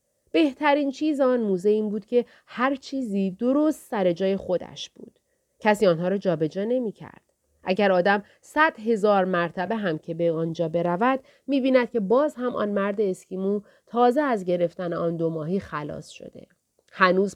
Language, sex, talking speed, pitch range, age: Persian, female, 160 wpm, 175-245 Hz, 40-59